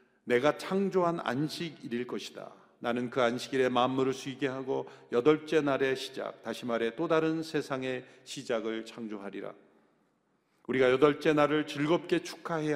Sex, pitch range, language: male, 120-170 Hz, Korean